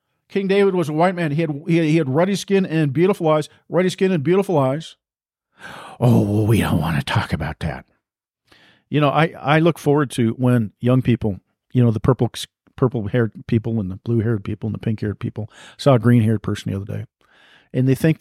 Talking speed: 220 wpm